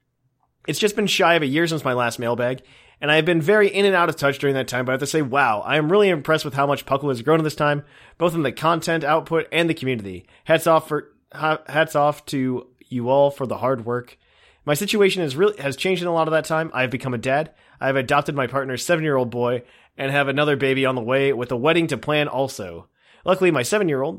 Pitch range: 130-160 Hz